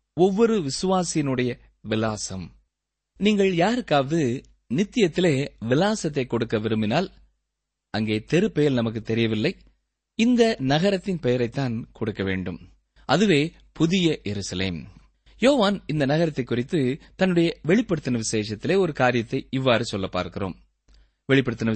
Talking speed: 95 wpm